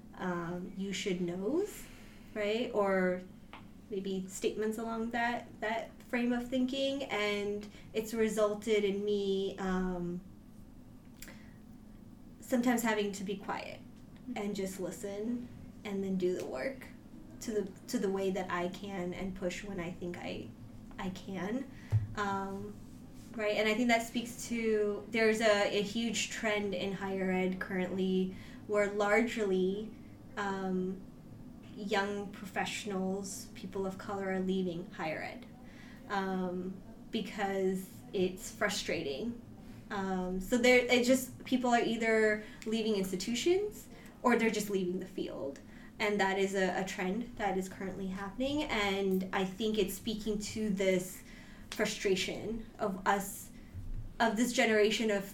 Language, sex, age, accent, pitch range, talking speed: English, female, 20-39, American, 190-220 Hz, 130 wpm